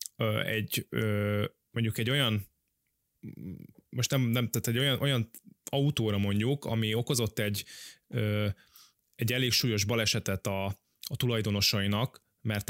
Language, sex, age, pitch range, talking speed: Hungarian, male, 20-39, 105-125 Hz, 130 wpm